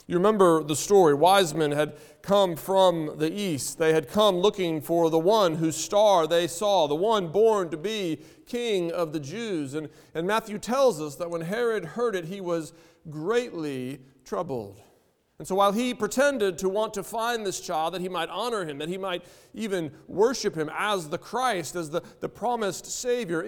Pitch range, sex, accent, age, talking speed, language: 160-210 Hz, male, American, 40-59, 190 wpm, English